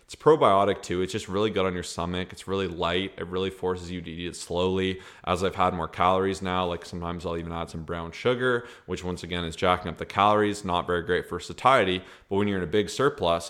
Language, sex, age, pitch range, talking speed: English, male, 20-39, 90-100 Hz, 245 wpm